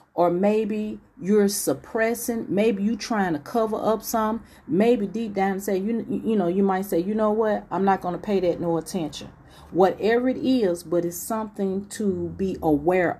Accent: American